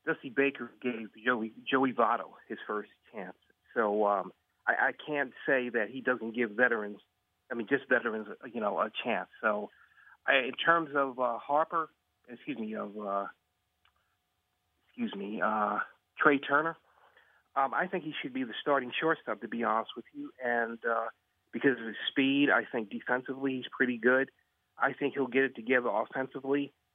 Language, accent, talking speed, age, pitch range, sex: English, American, 165 wpm, 40-59, 115-135 Hz, male